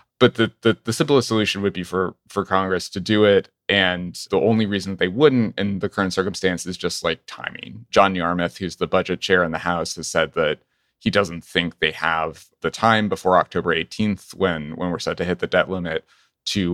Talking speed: 215 wpm